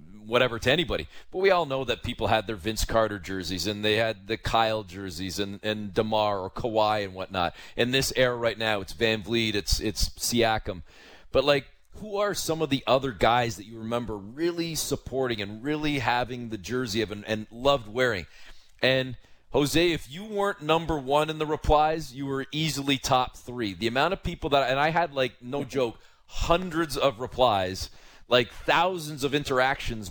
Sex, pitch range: male, 110-140 Hz